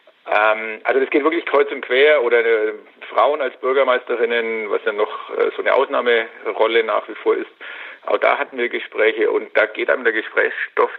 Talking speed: 175 wpm